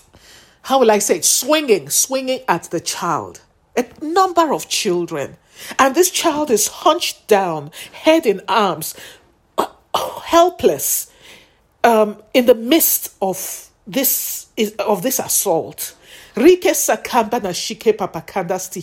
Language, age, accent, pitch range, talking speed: English, 50-69, Nigerian, 205-320 Hz, 100 wpm